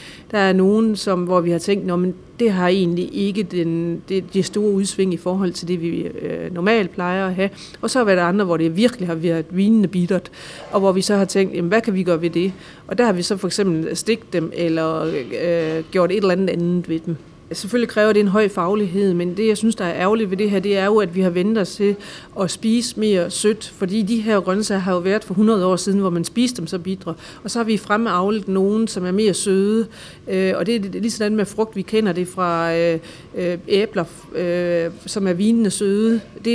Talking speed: 225 wpm